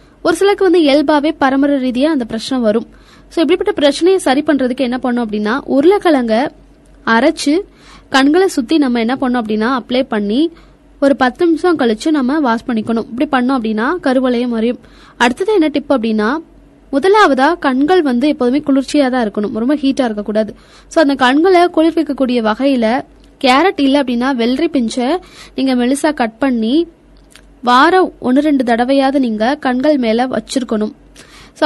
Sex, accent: female, native